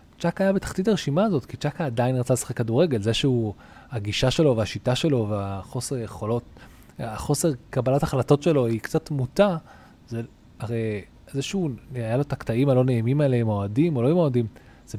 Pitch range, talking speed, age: 115-155 Hz, 175 wpm, 20-39